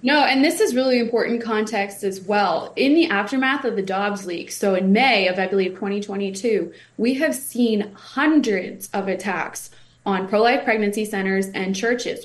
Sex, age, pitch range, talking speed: female, 20-39, 195-245 Hz, 170 wpm